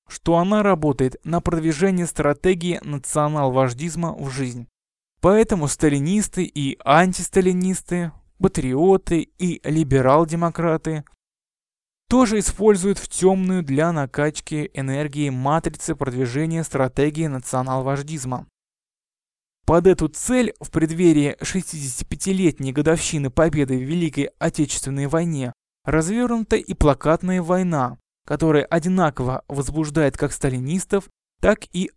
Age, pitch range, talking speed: 20-39, 140-180 Hz, 95 wpm